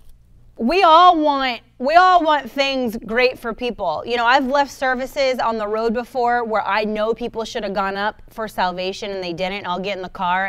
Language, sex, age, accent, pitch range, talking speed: English, female, 30-49, American, 200-255 Hz, 210 wpm